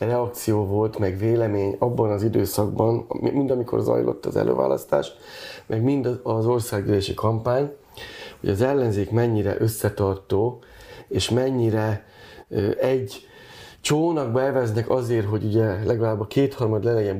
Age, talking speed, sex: 30-49, 120 wpm, male